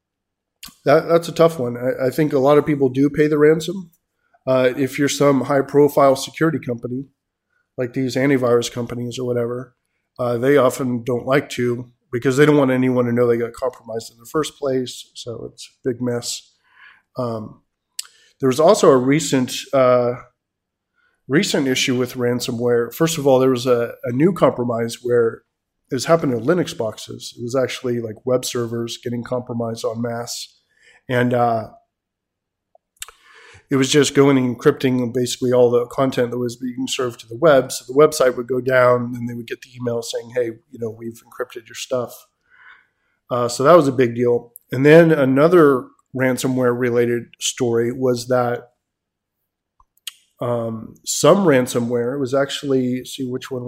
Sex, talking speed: male, 170 wpm